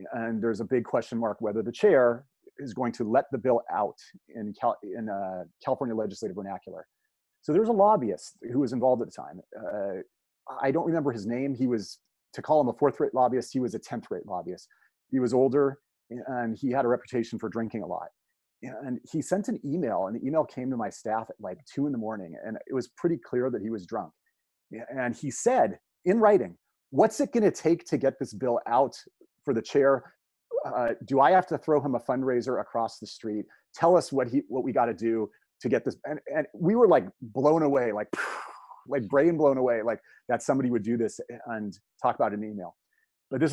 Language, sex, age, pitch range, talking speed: English, male, 30-49, 115-155 Hz, 215 wpm